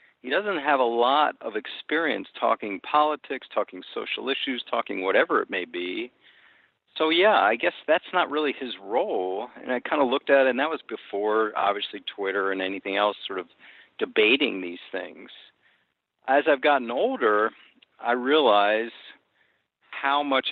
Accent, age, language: American, 50-69, English